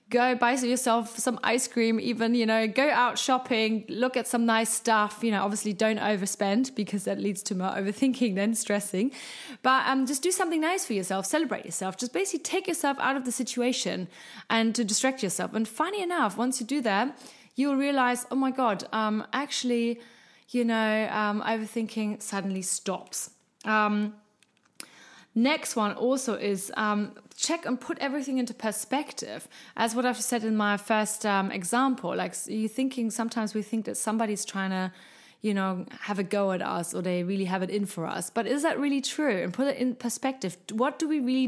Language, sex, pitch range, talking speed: German, female, 205-255 Hz, 190 wpm